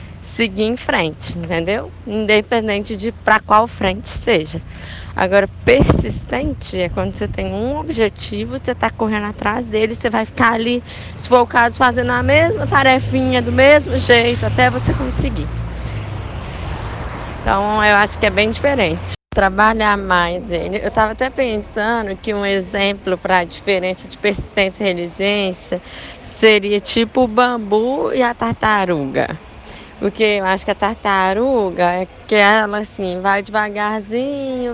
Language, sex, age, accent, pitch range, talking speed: Portuguese, female, 10-29, Brazilian, 195-225 Hz, 145 wpm